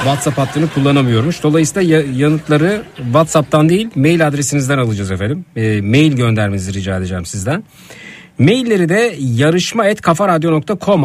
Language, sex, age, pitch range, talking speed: Turkish, male, 50-69, 115-165 Hz, 110 wpm